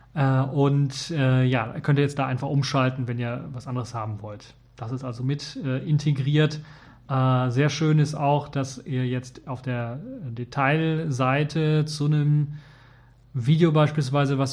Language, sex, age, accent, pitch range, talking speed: German, male, 30-49, German, 125-145 Hz, 150 wpm